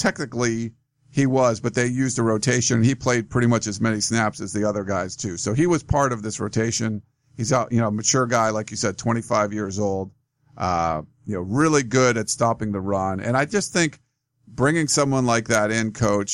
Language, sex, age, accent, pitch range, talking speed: English, male, 50-69, American, 110-130 Hz, 215 wpm